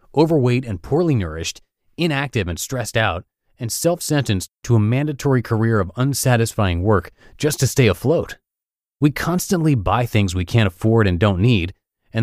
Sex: male